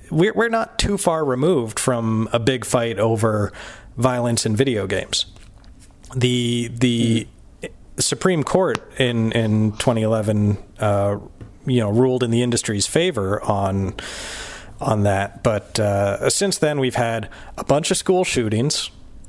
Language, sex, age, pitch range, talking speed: English, male, 40-59, 105-125 Hz, 135 wpm